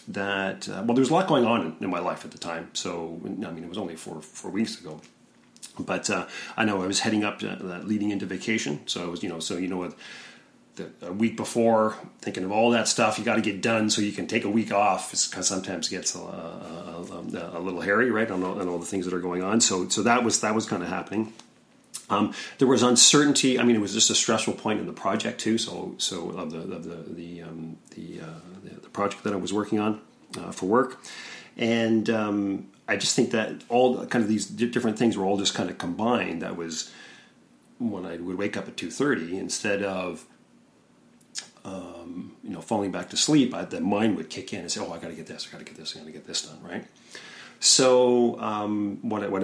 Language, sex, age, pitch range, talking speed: English, male, 40-59, 95-115 Hz, 245 wpm